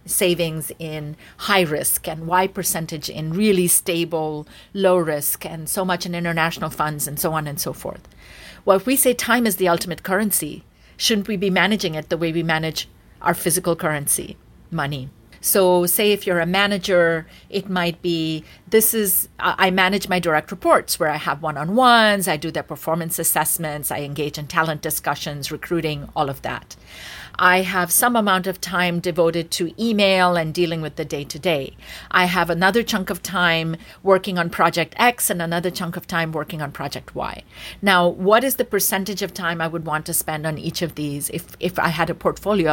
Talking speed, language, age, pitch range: 190 wpm, English, 40-59, 160-195 Hz